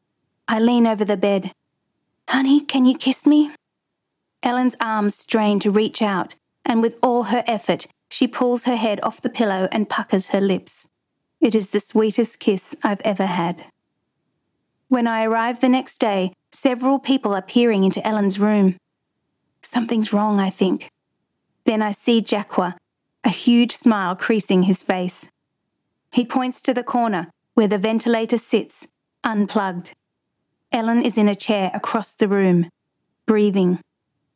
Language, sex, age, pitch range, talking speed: English, female, 40-59, 195-240 Hz, 150 wpm